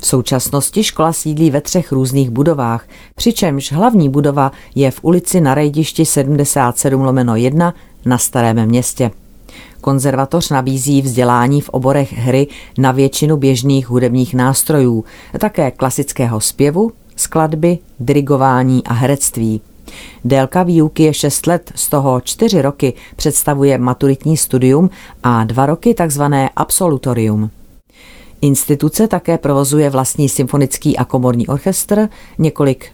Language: Czech